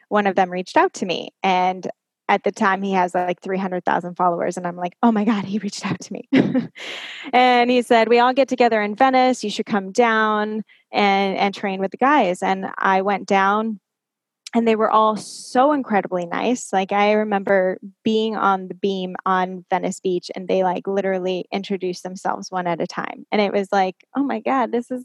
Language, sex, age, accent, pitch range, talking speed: English, female, 10-29, American, 185-225 Hz, 205 wpm